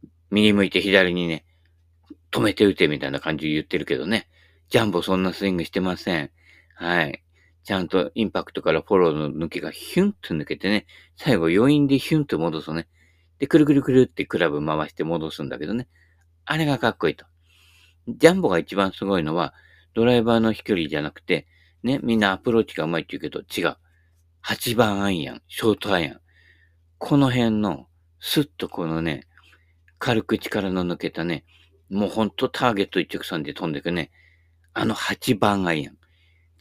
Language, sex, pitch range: Japanese, male, 85-110 Hz